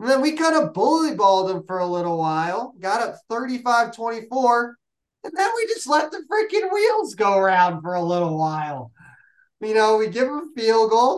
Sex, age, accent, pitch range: male, 20-39, American, 180-250 Hz